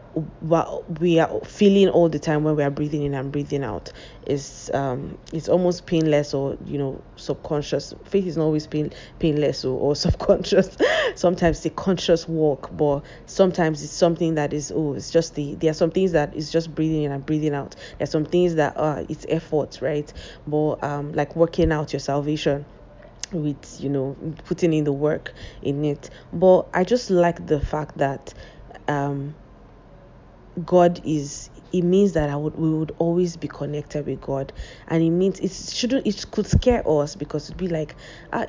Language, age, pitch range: English, 20-39, 150-175 Hz